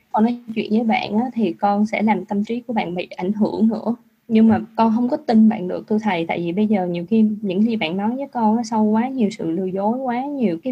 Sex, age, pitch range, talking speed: female, 20-39, 190-225 Hz, 280 wpm